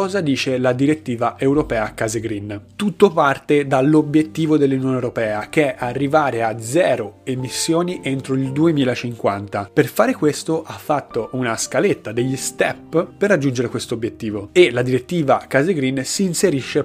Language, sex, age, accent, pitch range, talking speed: Italian, male, 30-49, native, 125-155 Hz, 145 wpm